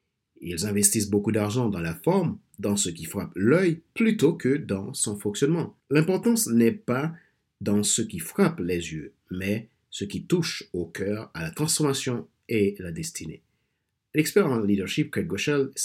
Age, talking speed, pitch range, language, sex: 50-69, 165 wpm, 100-140 Hz, French, male